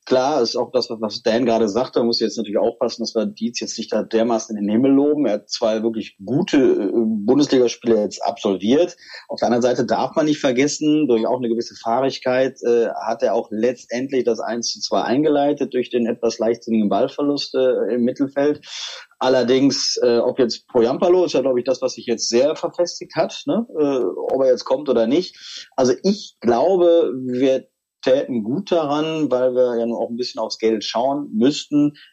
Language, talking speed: German, 195 wpm